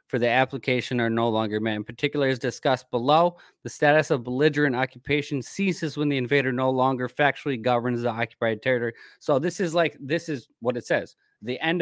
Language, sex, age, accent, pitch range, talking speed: English, male, 20-39, American, 115-145 Hz, 200 wpm